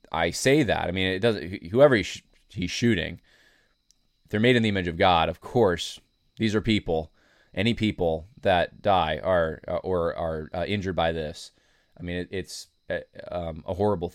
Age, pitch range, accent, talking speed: 20-39, 85-105 Hz, American, 185 wpm